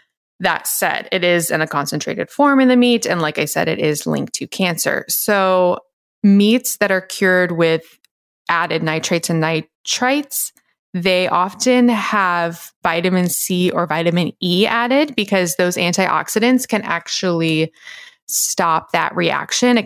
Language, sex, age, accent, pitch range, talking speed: English, female, 20-39, American, 165-210 Hz, 145 wpm